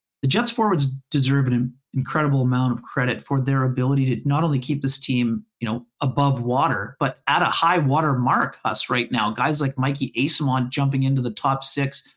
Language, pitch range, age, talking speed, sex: English, 130-150 Hz, 30-49, 195 wpm, male